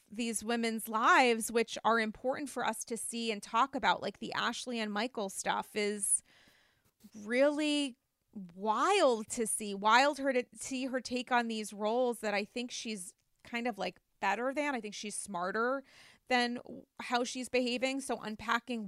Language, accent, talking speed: English, American, 165 wpm